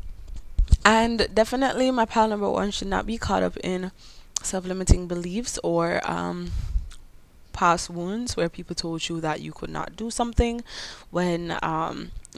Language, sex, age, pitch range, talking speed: English, female, 10-29, 155-200 Hz, 145 wpm